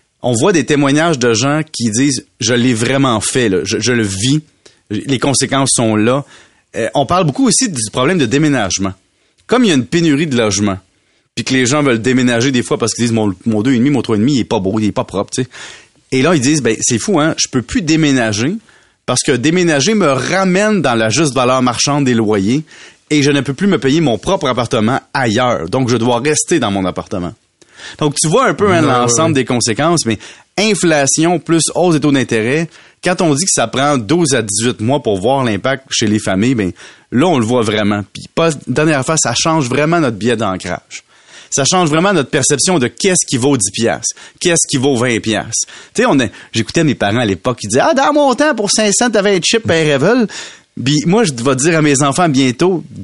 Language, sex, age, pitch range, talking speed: French, male, 30-49, 115-160 Hz, 230 wpm